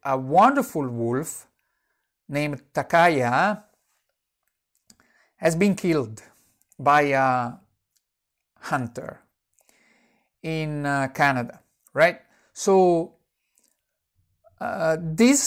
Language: English